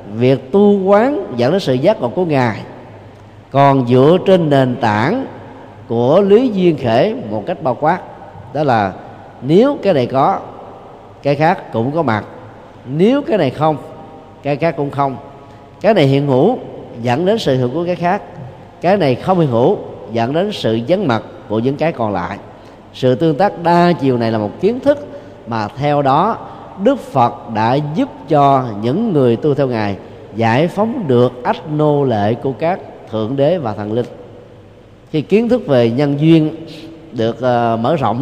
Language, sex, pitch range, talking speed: Vietnamese, male, 115-160 Hz, 175 wpm